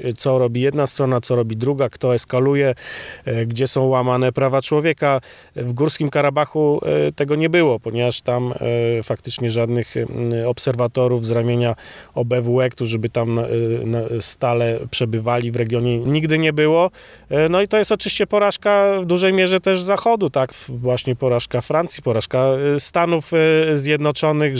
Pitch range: 120-145 Hz